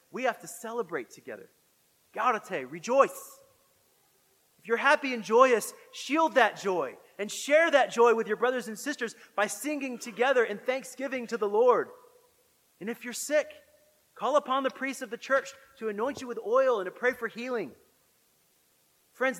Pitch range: 200-260 Hz